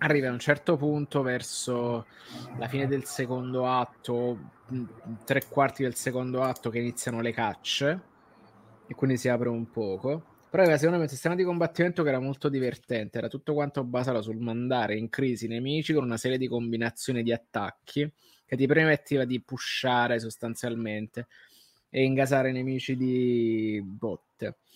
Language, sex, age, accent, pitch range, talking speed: Italian, male, 20-39, native, 115-135 Hz, 160 wpm